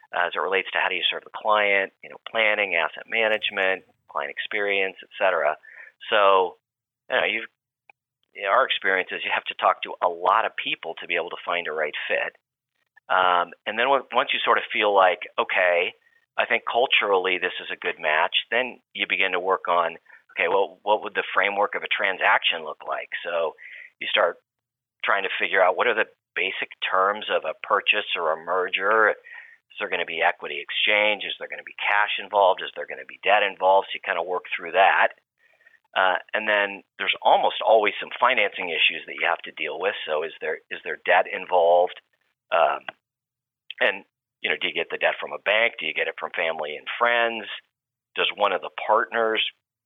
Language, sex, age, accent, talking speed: English, male, 40-59, American, 205 wpm